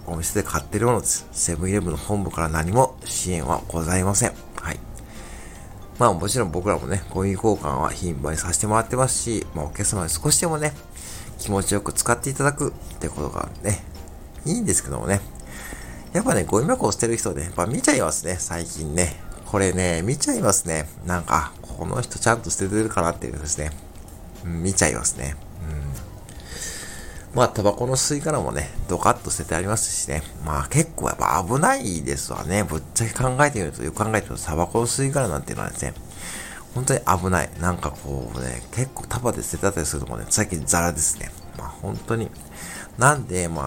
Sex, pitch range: male, 80-110 Hz